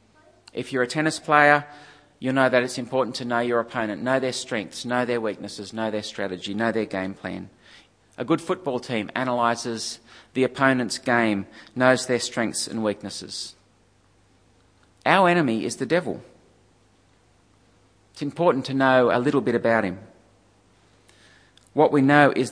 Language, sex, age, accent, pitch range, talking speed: English, male, 40-59, Australian, 100-135 Hz, 155 wpm